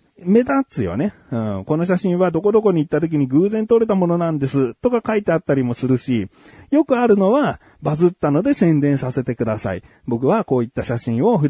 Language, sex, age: Japanese, male, 40-59